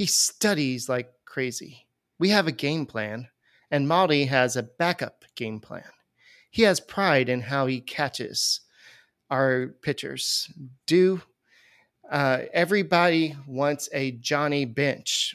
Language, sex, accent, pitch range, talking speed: English, male, American, 125-150 Hz, 125 wpm